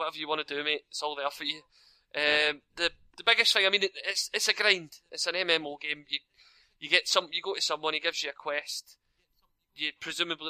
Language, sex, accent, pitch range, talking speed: English, male, British, 145-160 Hz, 240 wpm